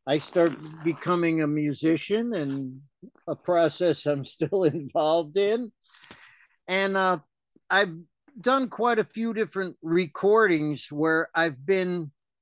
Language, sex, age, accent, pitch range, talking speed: English, male, 50-69, American, 150-195 Hz, 115 wpm